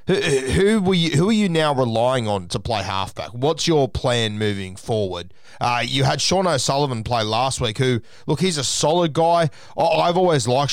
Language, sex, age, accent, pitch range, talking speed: English, male, 30-49, Australian, 120-160 Hz, 190 wpm